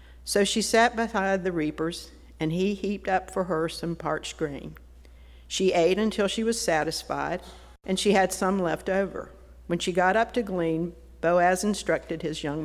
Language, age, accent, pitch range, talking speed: English, 50-69, American, 150-200 Hz, 175 wpm